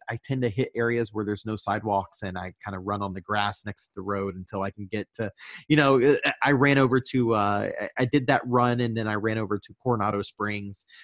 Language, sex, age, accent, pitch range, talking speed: English, male, 30-49, American, 110-140 Hz, 245 wpm